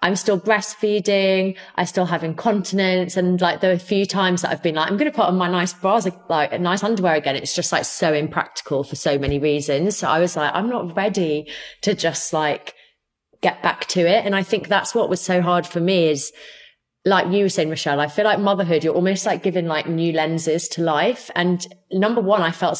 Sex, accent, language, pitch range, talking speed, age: female, British, English, 165-210 Hz, 225 wpm, 30-49